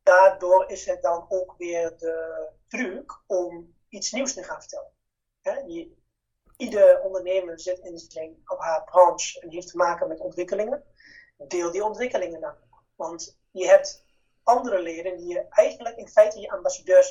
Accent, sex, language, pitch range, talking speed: Dutch, male, Dutch, 180-285 Hz, 160 wpm